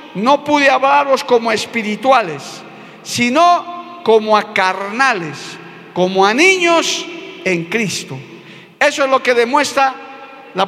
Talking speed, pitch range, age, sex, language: 110 wpm, 200-280 Hz, 50-69, male, Spanish